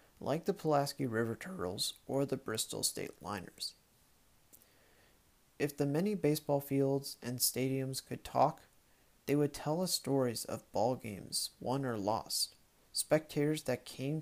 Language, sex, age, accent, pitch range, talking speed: English, male, 30-49, American, 125-155 Hz, 140 wpm